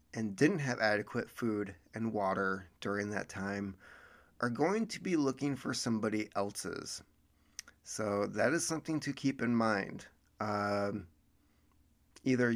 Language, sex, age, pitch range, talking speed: English, male, 30-49, 100-130 Hz, 135 wpm